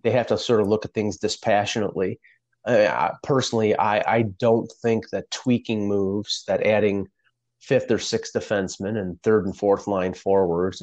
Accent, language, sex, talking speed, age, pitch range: American, English, male, 165 wpm, 30-49, 95-115 Hz